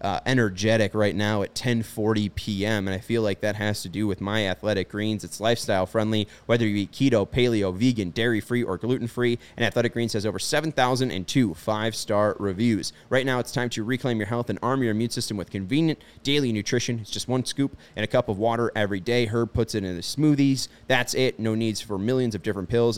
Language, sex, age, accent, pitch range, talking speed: English, male, 30-49, American, 100-125 Hz, 215 wpm